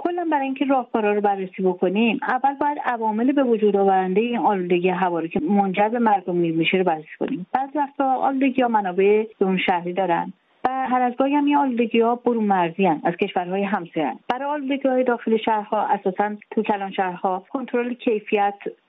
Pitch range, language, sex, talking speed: 190-240 Hz, Persian, female, 170 wpm